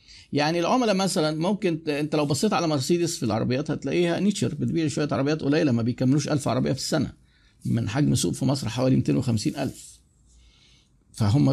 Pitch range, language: 130-170 Hz, Arabic